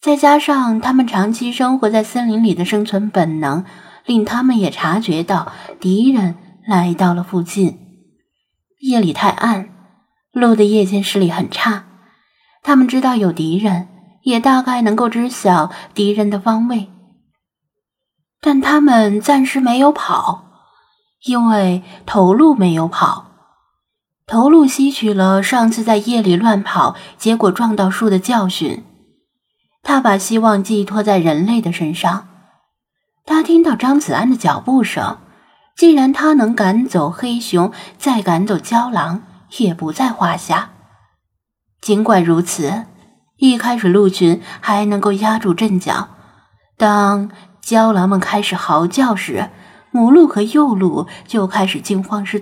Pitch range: 185-245 Hz